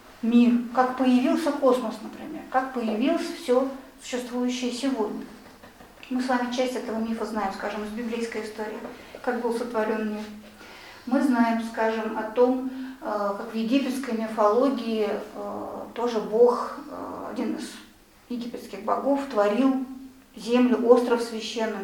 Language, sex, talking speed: Russian, female, 120 wpm